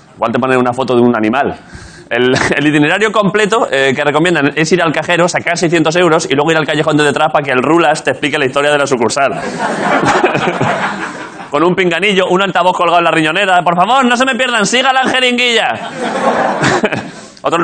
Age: 20-39